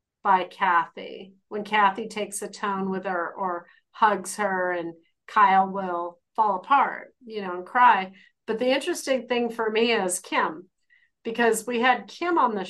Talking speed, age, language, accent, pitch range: 165 wpm, 40-59, English, American, 185-215 Hz